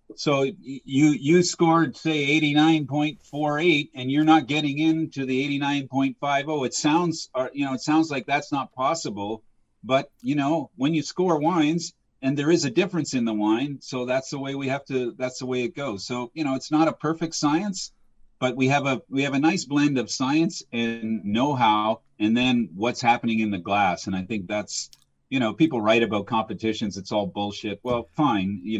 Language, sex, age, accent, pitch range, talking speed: English, male, 40-59, American, 115-160 Hz, 195 wpm